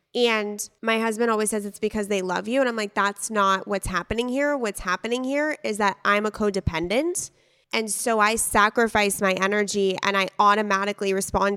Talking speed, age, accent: 185 wpm, 20-39, American